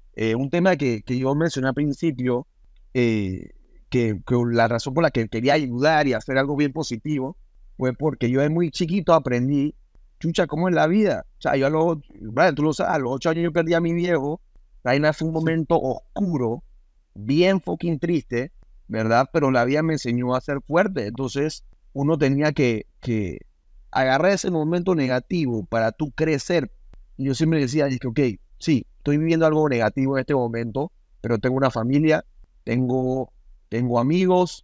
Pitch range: 125-160 Hz